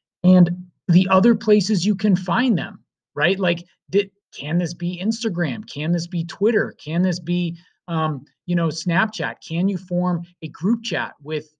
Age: 30-49